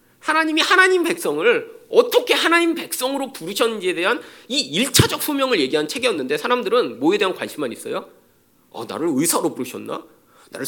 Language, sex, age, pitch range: Korean, male, 40-59, 225-345 Hz